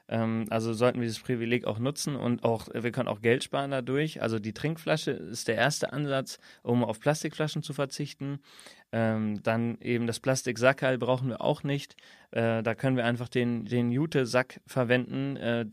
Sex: male